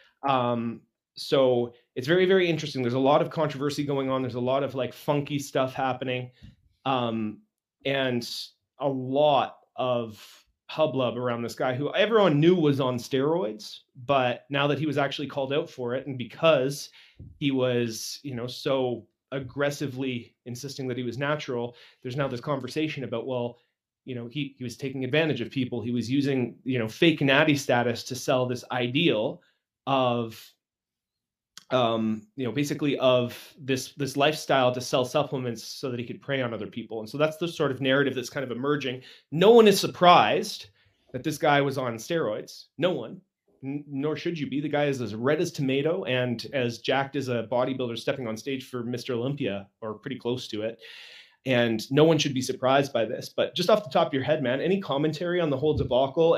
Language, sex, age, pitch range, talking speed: English, male, 30-49, 120-145 Hz, 190 wpm